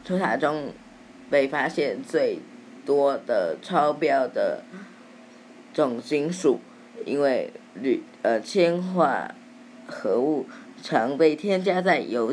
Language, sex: Chinese, female